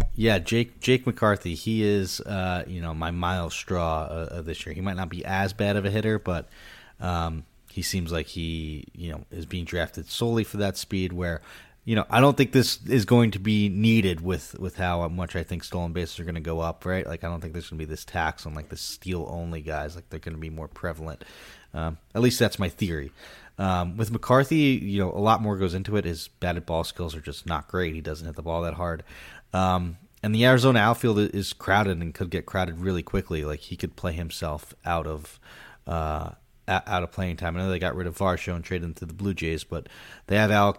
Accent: American